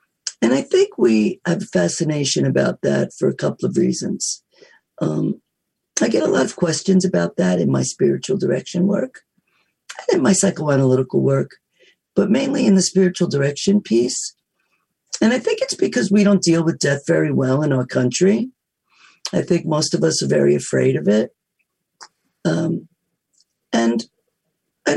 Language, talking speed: English, 160 wpm